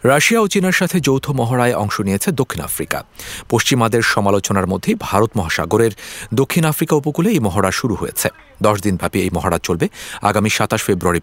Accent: Indian